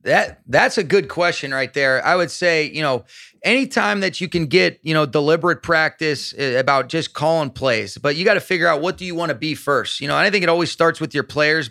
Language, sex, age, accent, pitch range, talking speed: English, male, 30-49, American, 145-165 Hz, 245 wpm